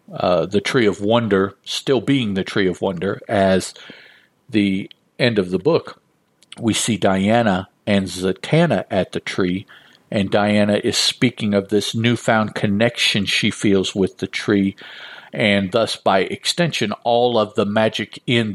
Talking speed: 150 wpm